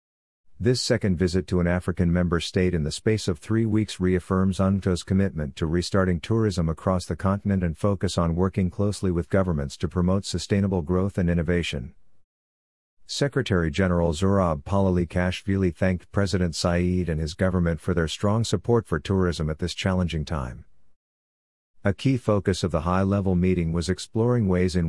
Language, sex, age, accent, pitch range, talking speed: English, male, 50-69, American, 85-100 Hz, 160 wpm